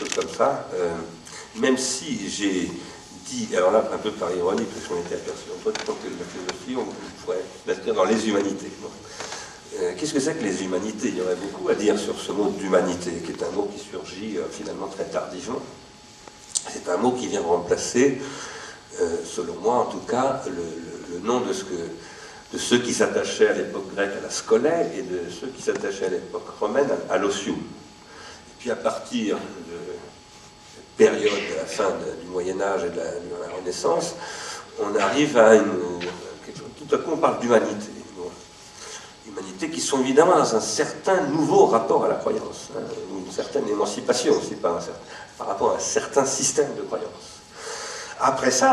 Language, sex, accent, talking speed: French, male, French, 195 wpm